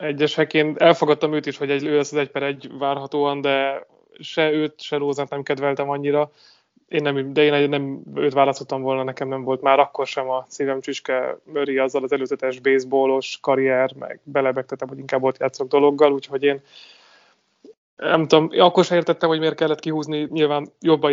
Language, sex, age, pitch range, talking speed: Hungarian, male, 20-39, 135-150 Hz, 185 wpm